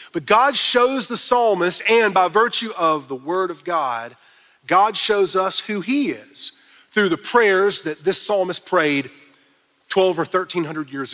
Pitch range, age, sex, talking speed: 175-215 Hz, 40-59, male, 160 wpm